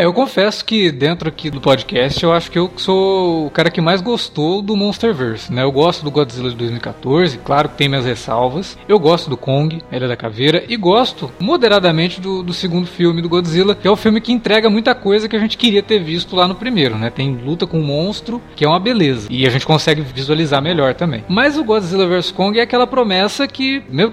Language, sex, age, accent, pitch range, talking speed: Portuguese, male, 20-39, Brazilian, 135-200 Hz, 225 wpm